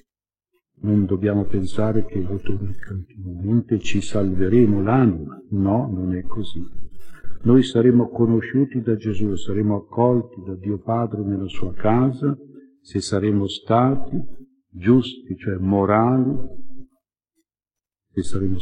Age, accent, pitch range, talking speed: 50-69, native, 100-120 Hz, 110 wpm